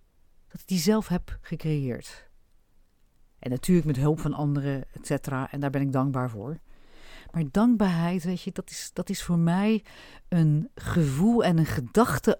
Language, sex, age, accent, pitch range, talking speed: Dutch, female, 50-69, Dutch, 145-180 Hz, 160 wpm